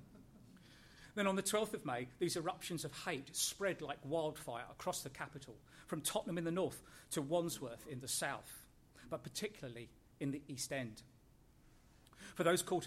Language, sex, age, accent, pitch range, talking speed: English, male, 40-59, British, 130-170 Hz, 165 wpm